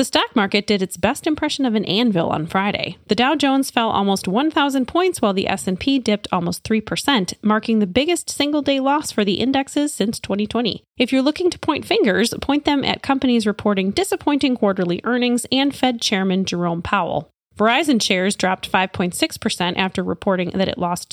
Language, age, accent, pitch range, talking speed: English, 30-49, American, 190-270 Hz, 180 wpm